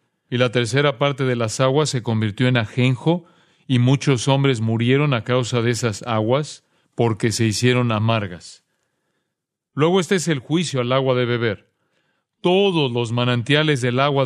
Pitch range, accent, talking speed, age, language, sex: 120-150 Hz, Mexican, 160 wpm, 40-59, Spanish, male